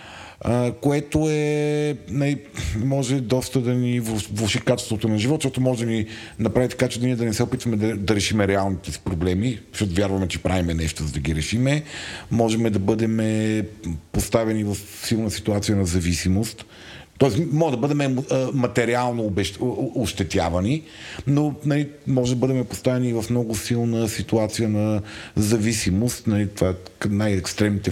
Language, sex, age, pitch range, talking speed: Bulgarian, male, 40-59, 95-120 Hz, 150 wpm